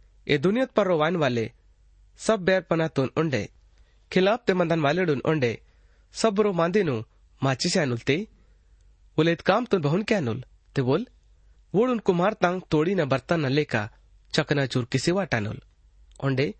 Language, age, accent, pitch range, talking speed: Hindi, 30-49, native, 115-180 Hz, 60 wpm